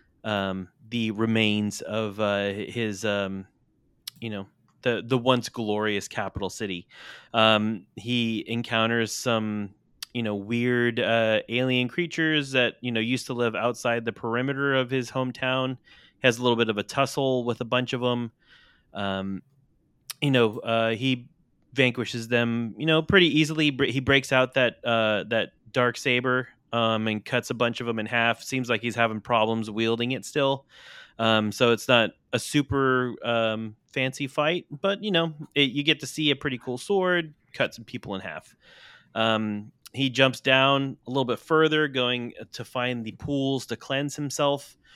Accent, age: American, 30-49